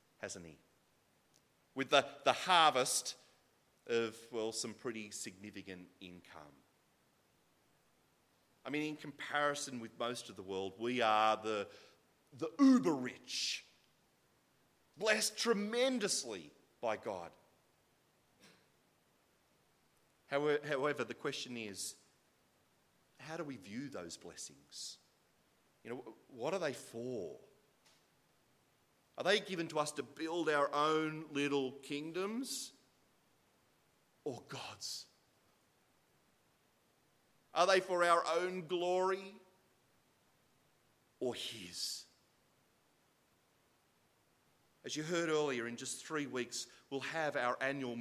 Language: English